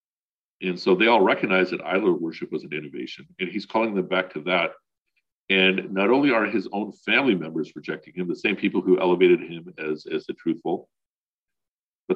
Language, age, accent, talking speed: English, 50-69, American, 190 wpm